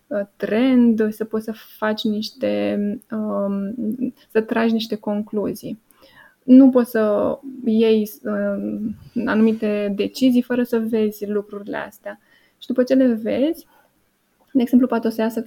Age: 20-39